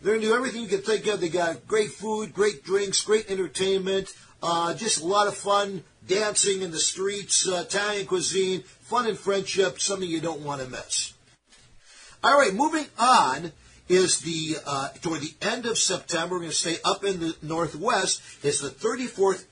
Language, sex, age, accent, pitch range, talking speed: English, male, 50-69, American, 150-195 Hz, 190 wpm